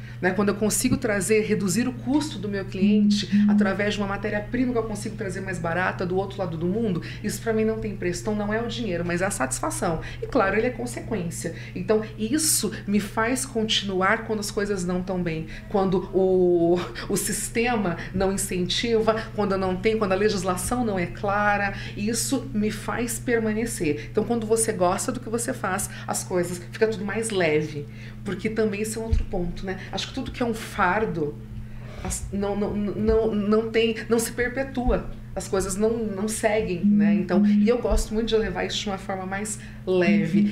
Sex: female